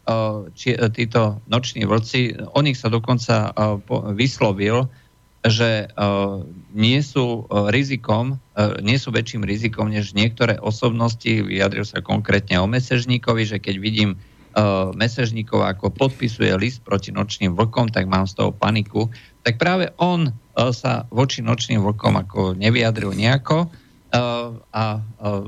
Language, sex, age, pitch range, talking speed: Slovak, male, 50-69, 105-125 Hz, 120 wpm